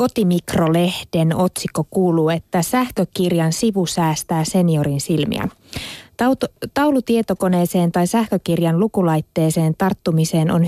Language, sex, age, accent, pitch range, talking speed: Finnish, female, 20-39, native, 165-195 Hz, 95 wpm